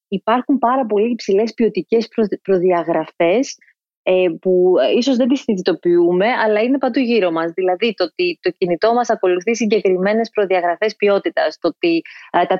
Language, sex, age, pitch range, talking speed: Greek, female, 30-49, 185-235 Hz, 140 wpm